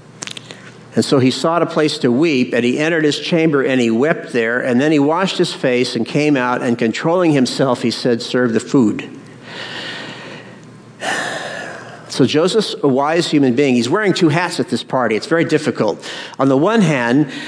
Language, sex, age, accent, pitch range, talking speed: English, male, 50-69, American, 125-160 Hz, 185 wpm